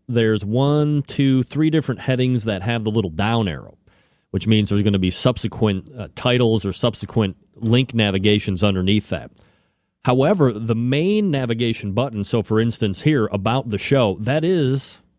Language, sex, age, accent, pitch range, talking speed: English, male, 30-49, American, 100-120 Hz, 160 wpm